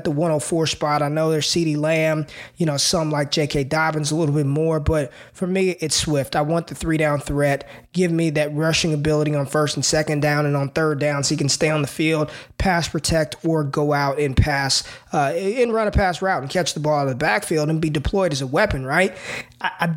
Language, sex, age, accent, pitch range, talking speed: English, male, 20-39, American, 150-175 Hz, 235 wpm